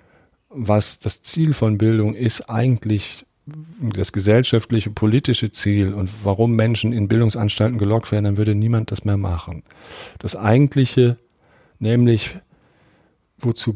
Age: 50-69